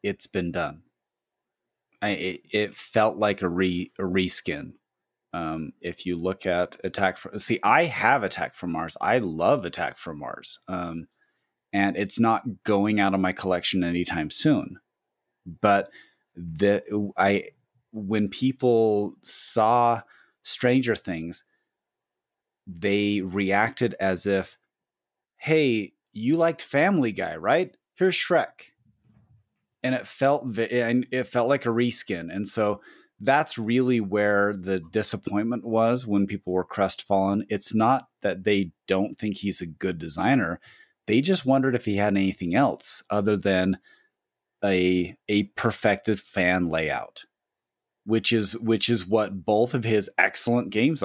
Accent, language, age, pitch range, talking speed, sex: American, English, 30-49, 95-115 Hz, 135 wpm, male